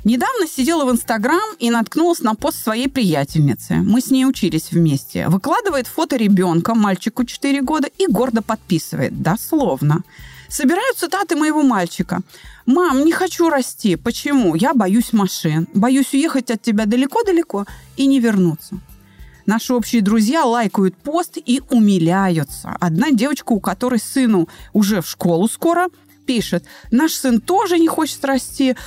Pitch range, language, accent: 190-285 Hz, Russian, native